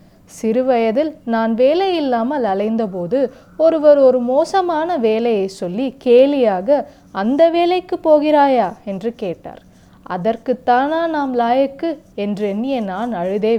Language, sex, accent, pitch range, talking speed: Tamil, female, native, 195-270 Hz, 95 wpm